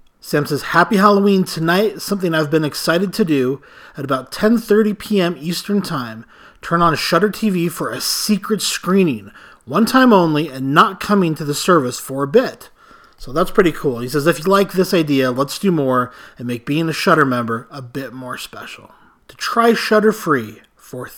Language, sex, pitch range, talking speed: English, male, 135-180 Hz, 185 wpm